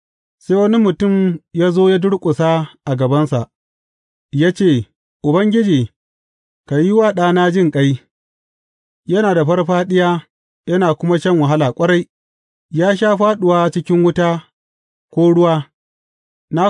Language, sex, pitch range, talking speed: English, male, 140-185 Hz, 110 wpm